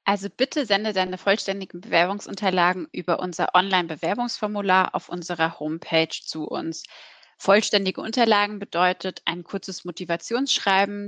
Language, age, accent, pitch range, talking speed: German, 30-49, German, 170-200 Hz, 110 wpm